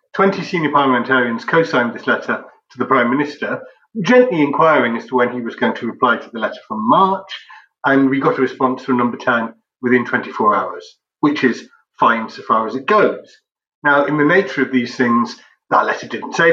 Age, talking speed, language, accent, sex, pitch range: 40-59, 205 wpm, English, British, male, 125-170 Hz